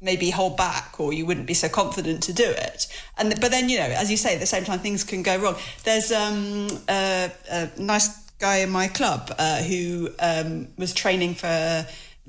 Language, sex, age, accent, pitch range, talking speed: English, female, 40-59, British, 165-195 Hz, 215 wpm